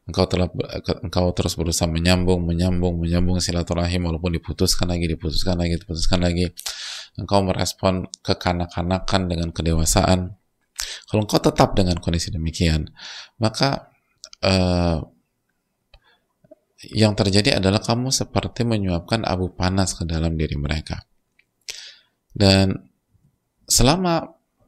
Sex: male